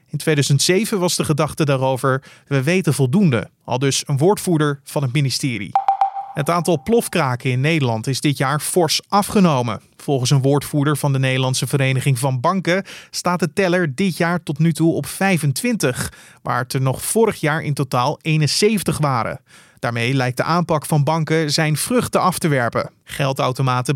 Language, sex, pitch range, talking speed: Dutch, male, 145-180 Hz, 170 wpm